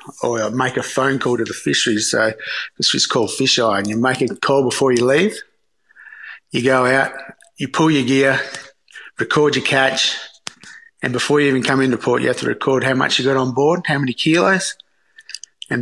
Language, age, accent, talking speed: English, 30-49, Australian, 200 wpm